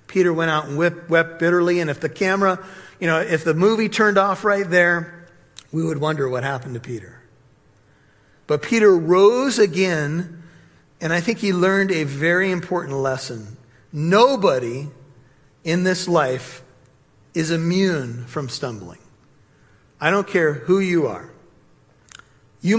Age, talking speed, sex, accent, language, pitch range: 50-69, 145 wpm, male, American, English, 140-180 Hz